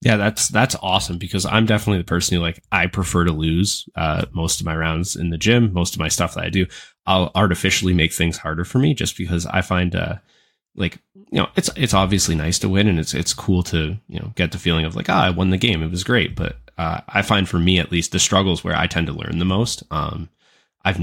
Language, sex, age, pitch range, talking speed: English, male, 20-39, 85-105 Hz, 260 wpm